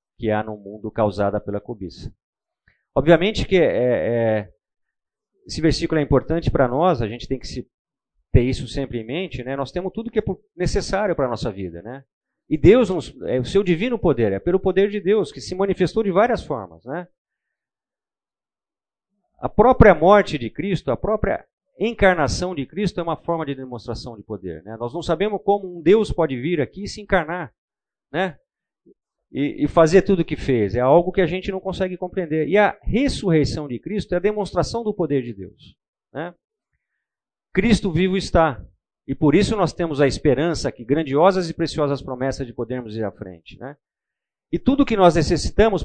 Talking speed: 185 wpm